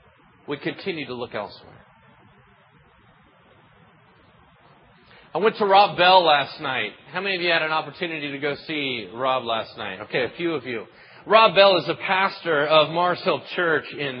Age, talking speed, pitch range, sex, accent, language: 30-49, 170 wpm, 155-200 Hz, male, American, English